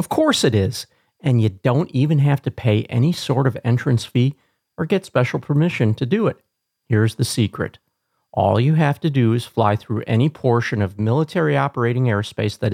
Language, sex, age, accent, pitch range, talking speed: English, male, 40-59, American, 110-145 Hz, 195 wpm